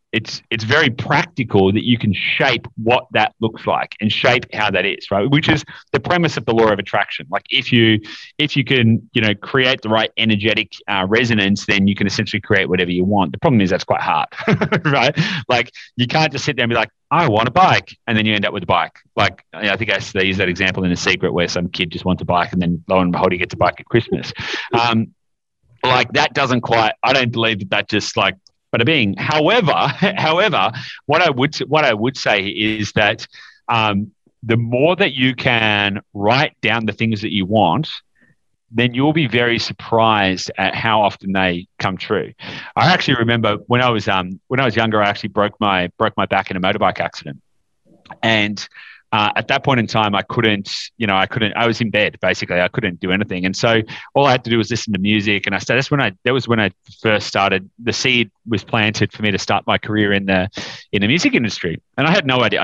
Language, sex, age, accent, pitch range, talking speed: English, male, 30-49, Australian, 100-125 Hz, 235 wpm